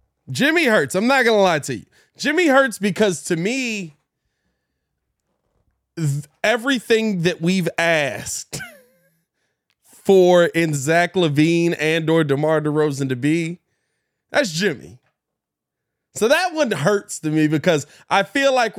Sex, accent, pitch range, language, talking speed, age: male, American, 145-180 Hz, English, 130 wpm, 20-39